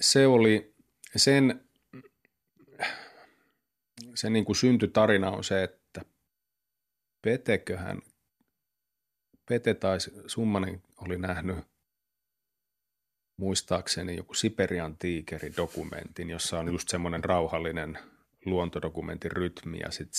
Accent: native